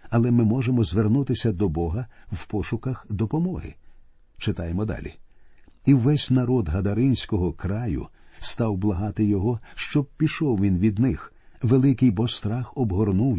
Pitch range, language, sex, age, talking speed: 105-135 Hz, Ukrainian, male, 50-69, 125 wpm